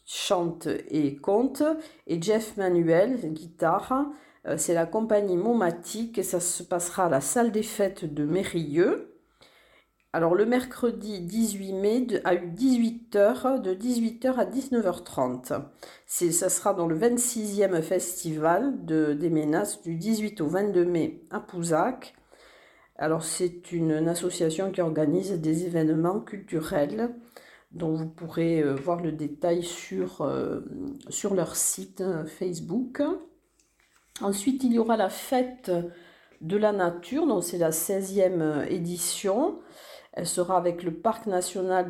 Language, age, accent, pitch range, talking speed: French, 50-69, French, 170-220 Hz, 135 wpm